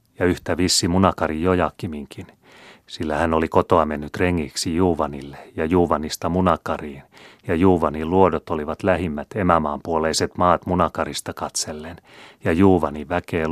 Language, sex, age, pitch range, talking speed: Finnish, male, 30-49, 80-90 Hz, 125 wpm